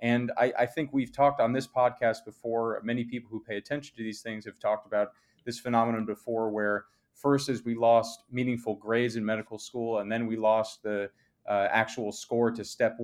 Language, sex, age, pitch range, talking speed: English, male, 30-49, 105-125 Hz, 205 wpm